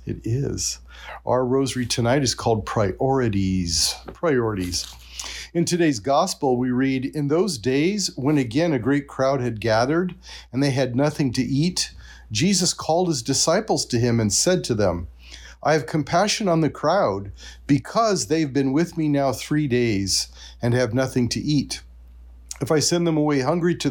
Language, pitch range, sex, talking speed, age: English, 100-160 Hz, male, 170 wpm, 40-59